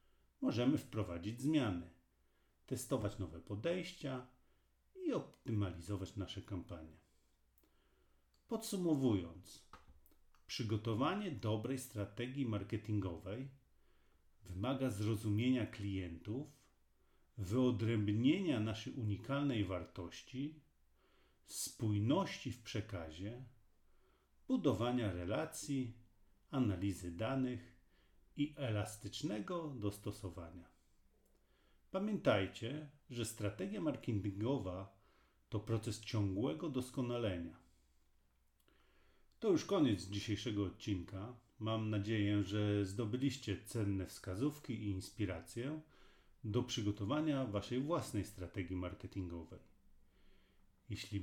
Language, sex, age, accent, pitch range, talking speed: English, male, 40-59, Polish, 95-125 Hz, 70 wpm